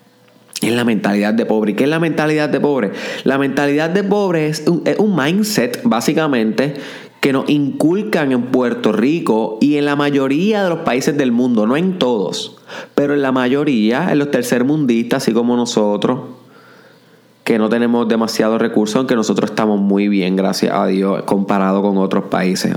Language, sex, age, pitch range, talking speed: Spanish, male, 20-39, 115-155 Hz, 175 wpm